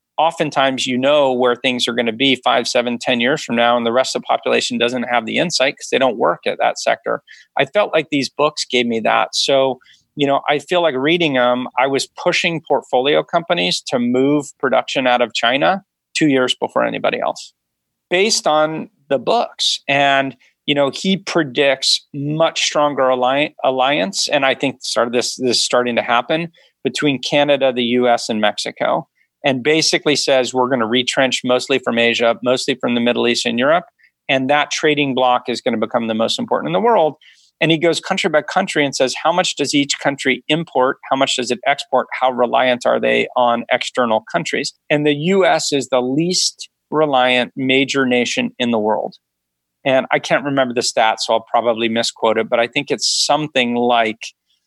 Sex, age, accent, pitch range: male, 40-59, American, 120-145 Hz